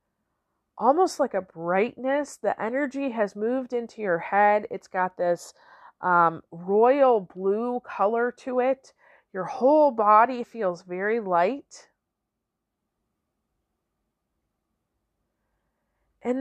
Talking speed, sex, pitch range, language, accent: 100 wpm, female, 205-270 Hz, English, American